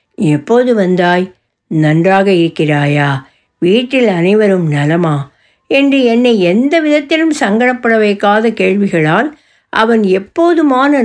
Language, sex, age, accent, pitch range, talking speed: Tamil, female, 60-79, native, 190-275 Hz, 85 wpm